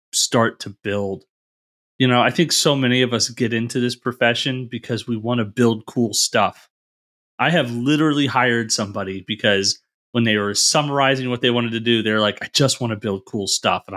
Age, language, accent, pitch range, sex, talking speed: 30-49, English, American, 110-150 Hz, male, 205 wpm